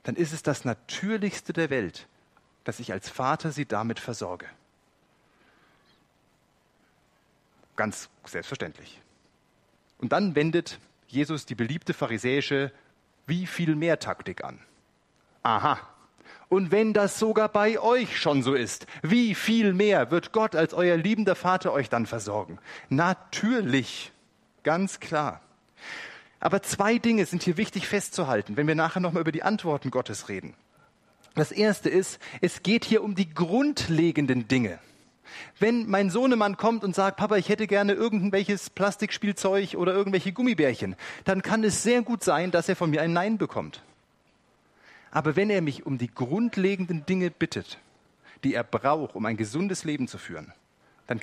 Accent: German